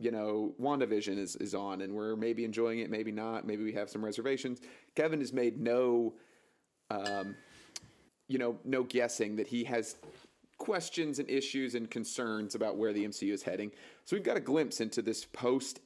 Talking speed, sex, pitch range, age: 185 wpm, male, 105-125 Hz, 30-49